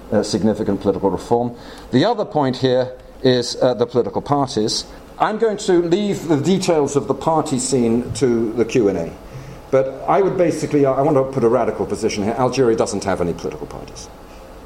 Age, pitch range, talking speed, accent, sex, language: 50-69, 110-145 Hz, 180 wpm, British, male, English